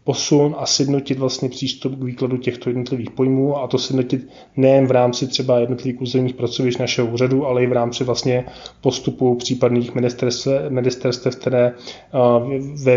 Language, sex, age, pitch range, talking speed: Czech, male, 20-39, 120-130 Hz, 150 wpm